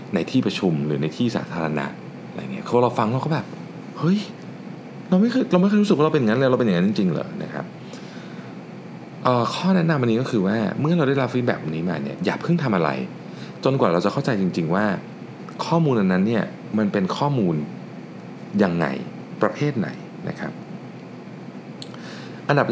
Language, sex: Thai, male